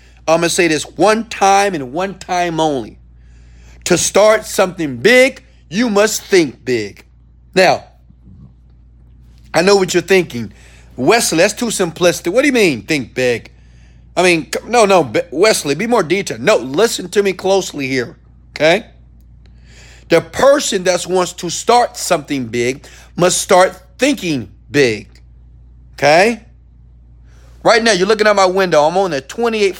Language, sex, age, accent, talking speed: English, male, 40-59, American, 150 wpm